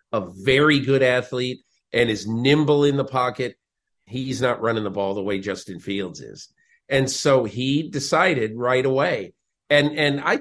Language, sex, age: English, male, 50-69